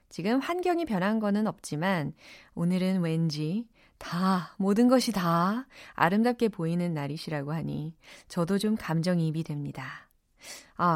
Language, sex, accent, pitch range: Korean, female, native, 170-255 Hz